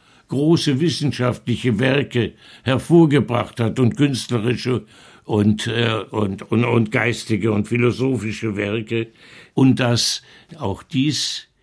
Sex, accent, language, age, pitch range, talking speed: male, German, German, 60-79, 105-130 Hz, 105 wpm